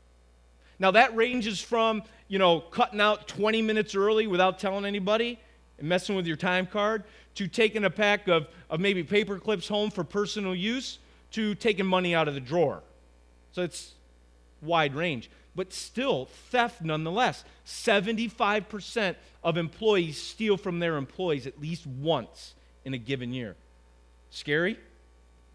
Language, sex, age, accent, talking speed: English, male, 30-49, American, 150 wpm